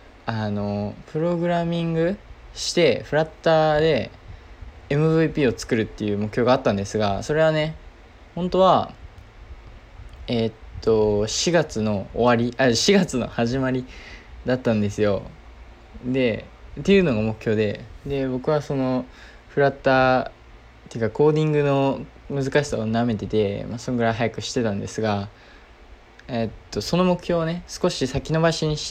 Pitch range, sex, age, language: 105-145 Hz, male, 20-39, Japanese